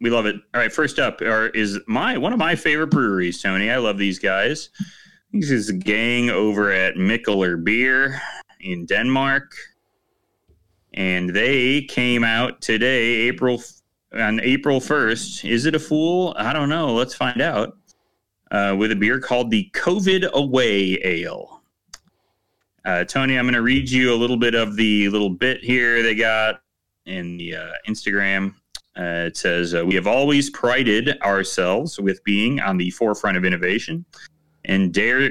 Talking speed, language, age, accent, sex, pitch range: 165 wpm, English, 30-49, American, male, 100-130 Hz